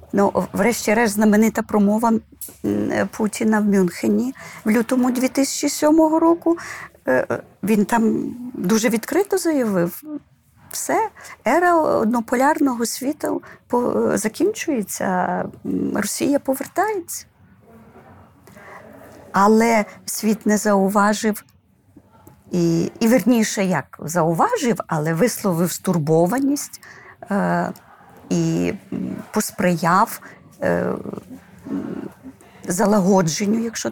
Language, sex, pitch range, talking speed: Ukrainian, female, 205-290 Hz, 70 wpm